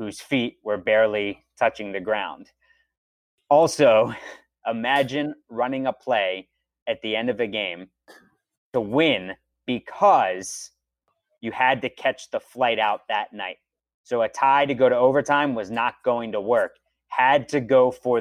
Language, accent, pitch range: English, American, 95-150 Hz